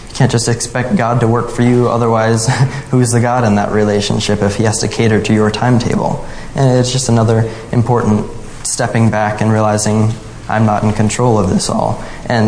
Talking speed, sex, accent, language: 200 wpm, male, American, English